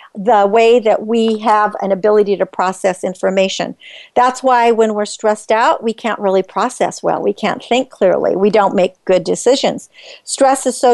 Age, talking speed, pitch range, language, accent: 50-69, 170 wpm, 210-260 Hz, English, American